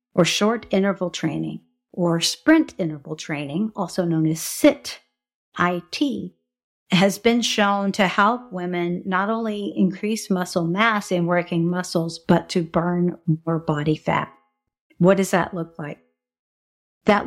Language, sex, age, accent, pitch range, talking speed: English, female, 50-69, American, 165-205 Hz, 135 wpm